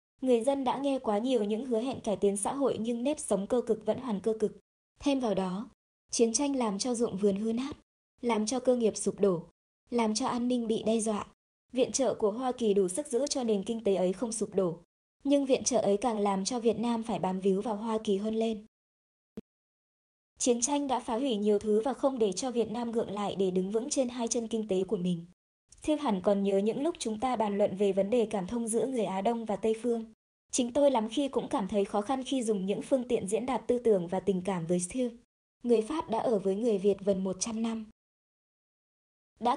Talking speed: 245 wpm